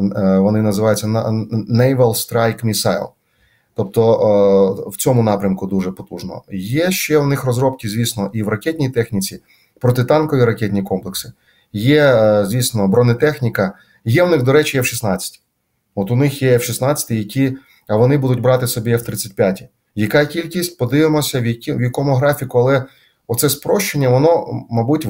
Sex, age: male, 30-49